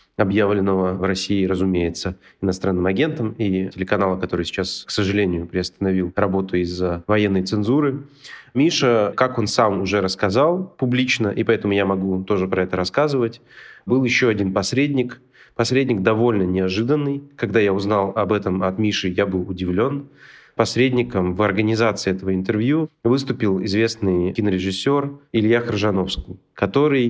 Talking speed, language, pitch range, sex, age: 135 wpm, Russian, 95-125 Hz, male, 30-49